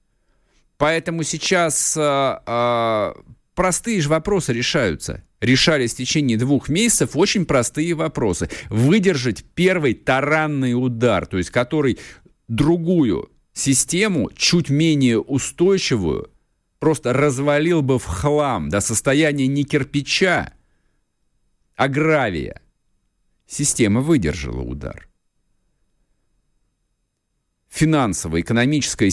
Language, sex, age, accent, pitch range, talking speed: Russian, male, 50-69, native, 110-150 Hz, 90 wpm